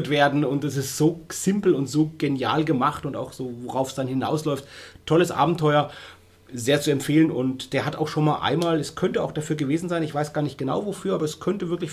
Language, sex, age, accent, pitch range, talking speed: German, male, 30-49, German, 135-165 Hz, 225 wpm